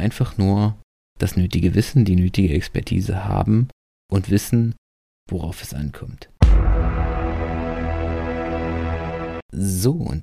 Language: German